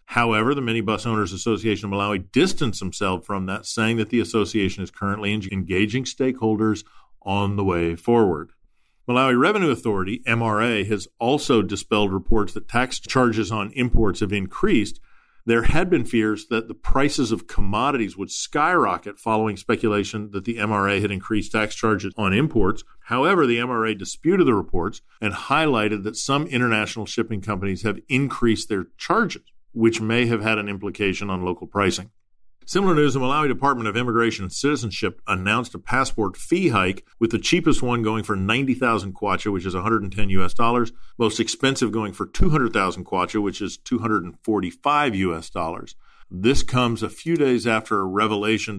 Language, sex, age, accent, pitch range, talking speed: English, male, 50-69, American, 100-120 Hz, 165 wpm